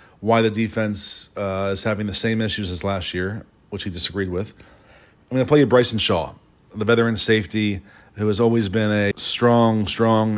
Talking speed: 190 wpm